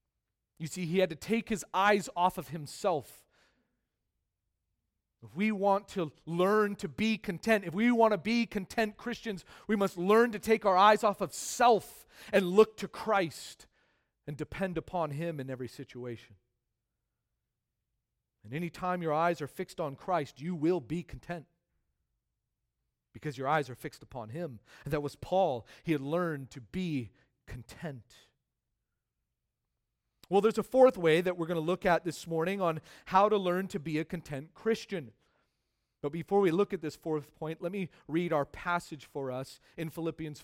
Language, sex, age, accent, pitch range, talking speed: English, male, 40-59, American, 140-195 Hz, 170 wpm